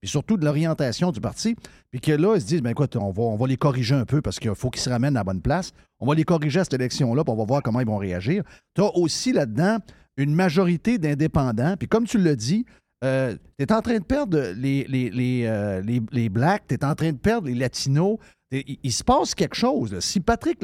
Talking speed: 260 wpm